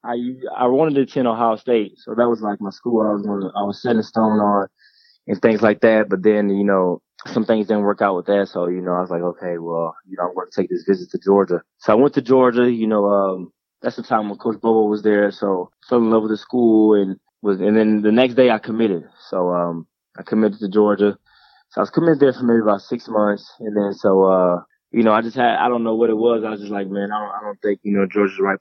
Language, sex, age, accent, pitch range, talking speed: English, male, 20-39, American, 95-110 Hz, 280 wpm